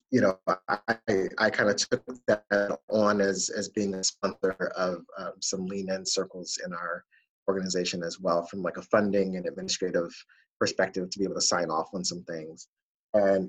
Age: 30-49